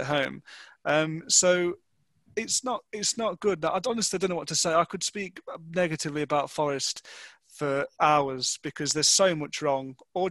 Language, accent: English, British